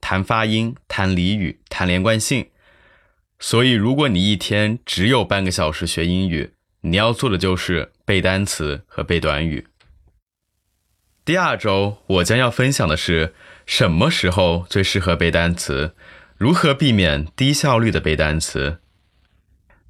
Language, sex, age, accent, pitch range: Chinese, male, 20-39, native, 85-110 Hz